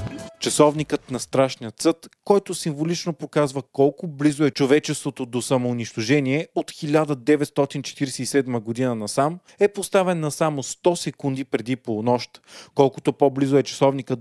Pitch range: 130-165 Hz